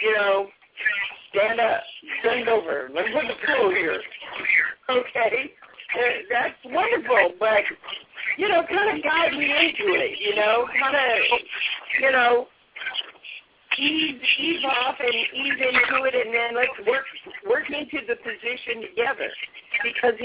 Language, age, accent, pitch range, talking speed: English, 50-69, American, 210-295 Hz, 140 wpm